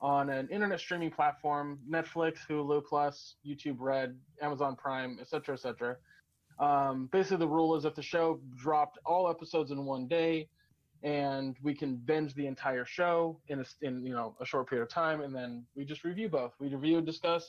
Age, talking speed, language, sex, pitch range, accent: 20-39, 195 wpm, English, male, 135-160 Hz, American